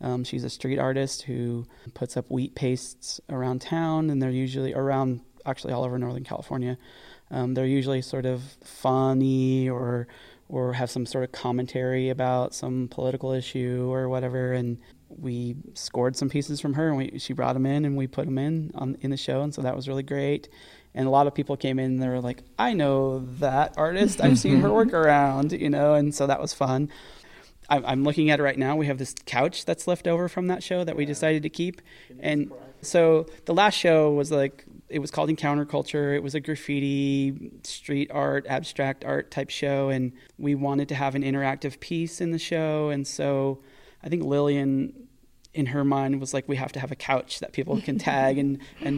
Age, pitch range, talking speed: 30-49, 130-145 Hz, 205 wpm